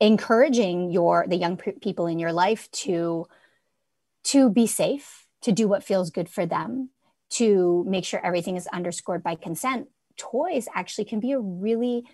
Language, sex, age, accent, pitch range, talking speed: English, female, 30-49, American, 180-255 Hz, 165 wpm